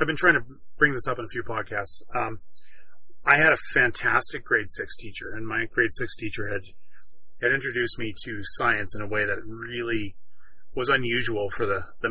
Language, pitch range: English, 100-120 Hz